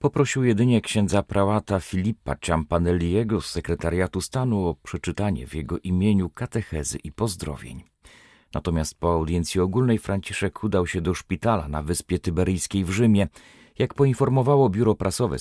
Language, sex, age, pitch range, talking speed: Polish, male, 40-59, 85-115 Hz, 135 wpm